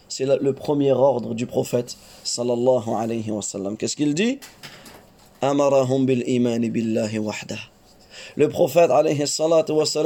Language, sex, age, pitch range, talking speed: French, male, 30-49, 125-180 Hz, 130 wpm